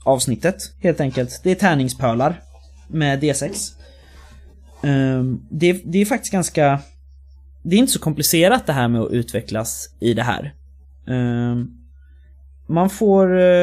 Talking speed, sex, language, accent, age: 125 wpm, male, Swedish, native, 20-39